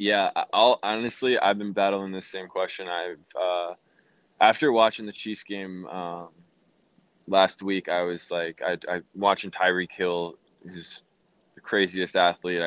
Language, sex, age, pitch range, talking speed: English, male, 20-39, 90-105 Hz, 145 wpm